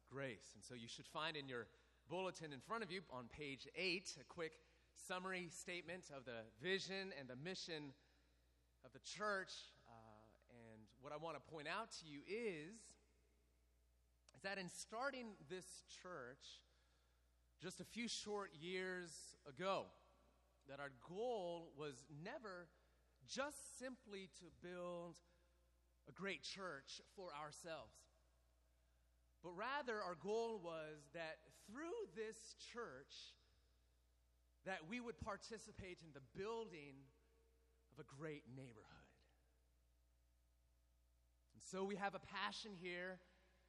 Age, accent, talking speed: 30-49, American, 130 wpm